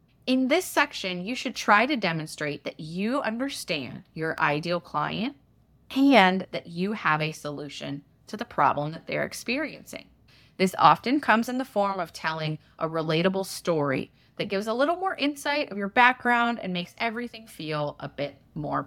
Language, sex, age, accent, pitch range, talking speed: English, female, 20-39, American, 155-225 Hz, 170 wpm